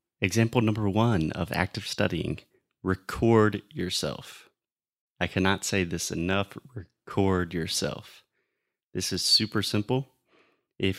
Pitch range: 90-115 Hz